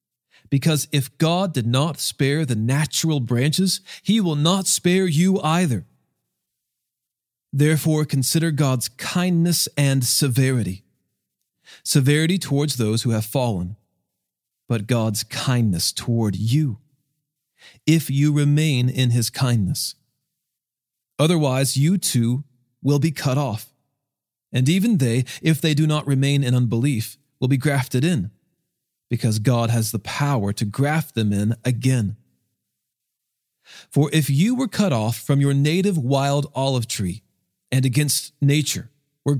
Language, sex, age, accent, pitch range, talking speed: English, male, 40-59, American, 120-160 Hz, 130 wpm